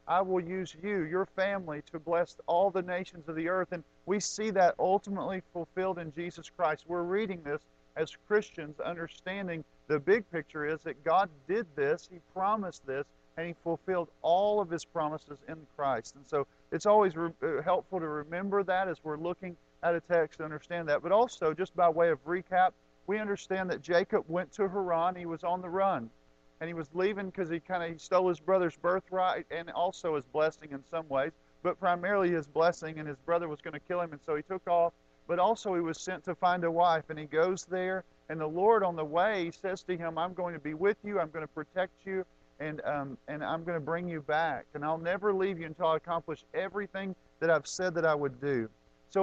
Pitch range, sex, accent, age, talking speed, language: 160-185 Hz, male, American, 50-69, 220 wpm, English